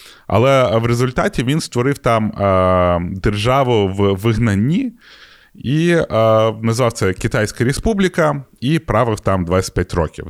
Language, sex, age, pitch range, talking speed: Ukrainian, male, 20-39, 95-130 Hz, 115 wpm